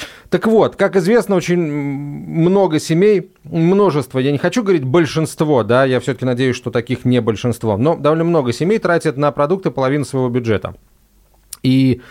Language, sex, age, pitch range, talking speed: Russian, male, 30-49, 125-175 Hz, 160 wpm